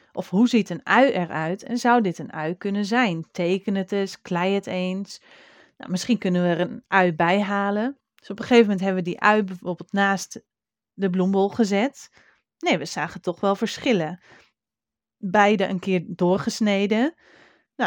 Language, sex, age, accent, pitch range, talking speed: Dutch, female, 30-49, Dutch, 185-230 Hz, 170 wpm